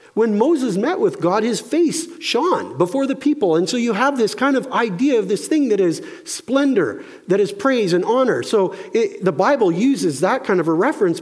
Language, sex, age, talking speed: English, male, 50-69, 210 wpm